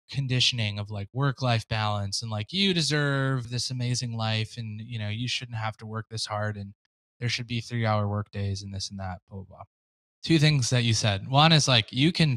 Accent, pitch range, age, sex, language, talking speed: American, 105-130 Hz, 20-39, male, English, 235 wpm